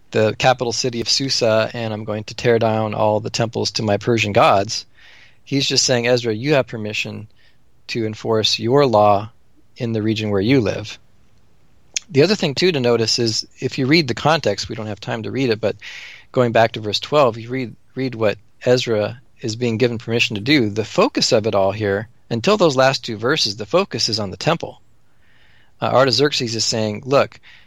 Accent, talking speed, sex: American, 200 wpm, male